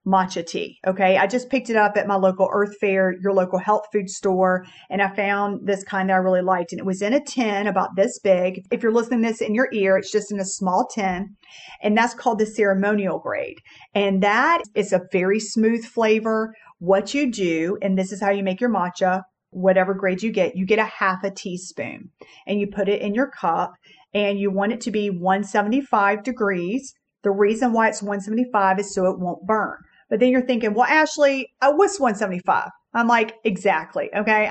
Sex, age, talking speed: female, 40-59, 210 wpm